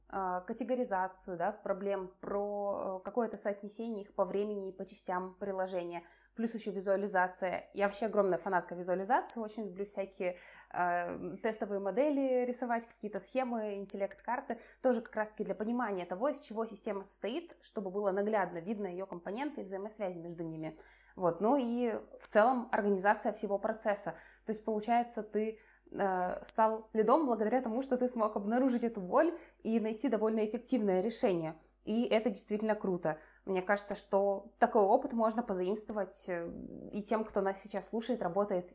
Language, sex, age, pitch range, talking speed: Russian, female, 20-39, 190-225 Hz, 150 wpm